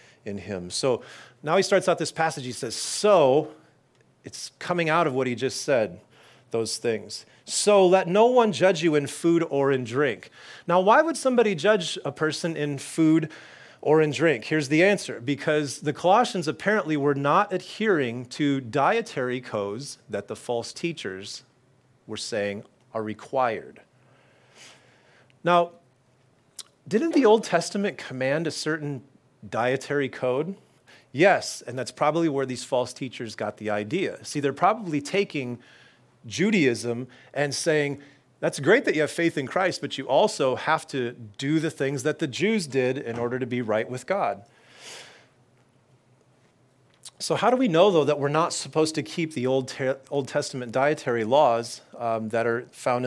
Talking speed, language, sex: 165 wpm, English, male